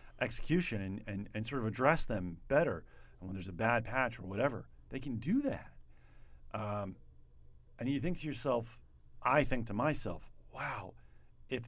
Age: 40-59